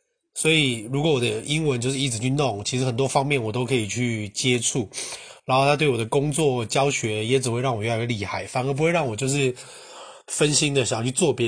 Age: 20-39